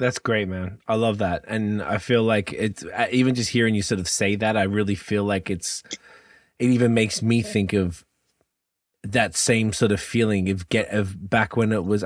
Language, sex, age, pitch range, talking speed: English, male, 20-39, 95-110 Hz, 210 wpm